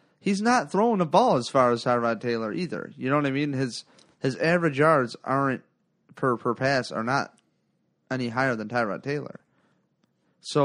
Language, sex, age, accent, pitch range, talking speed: English, male, 30-49, American, 130-185 Hz, 180 wpm